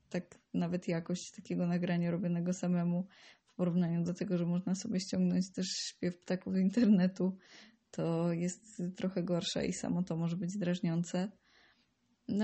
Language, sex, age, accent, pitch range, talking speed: Polish, female, 20-39, native, 180-200 Hz, 150 wpm